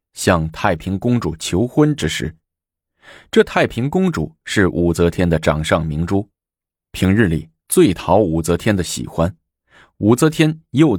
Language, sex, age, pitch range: Chinese, male, 20-39, 85-110 Hz